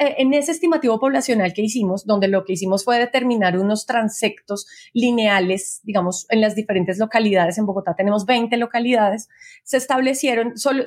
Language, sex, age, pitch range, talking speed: Spanish, female, 30-49, 205-250 Hz, 155 wpm